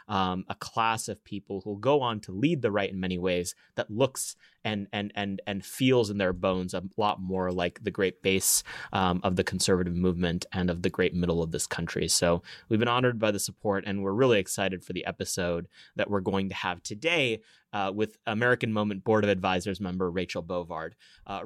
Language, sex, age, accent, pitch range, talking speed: English, male, 30-49, American, 95-110 Hz, 210 wpm